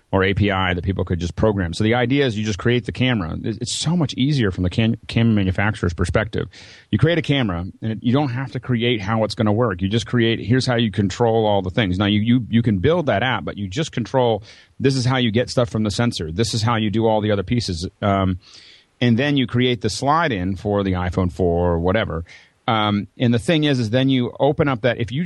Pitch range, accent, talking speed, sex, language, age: 100-125 Hz, American, 260 wpm, male, English, 40-59